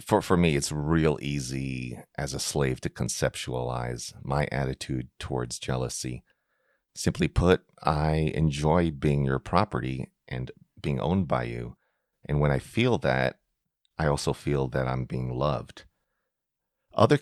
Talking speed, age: 140 wpm, 40-59